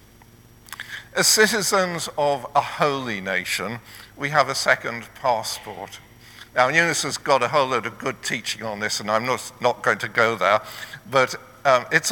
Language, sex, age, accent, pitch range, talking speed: English, male, 50-69, British, 110-145 Hz, 170 wpm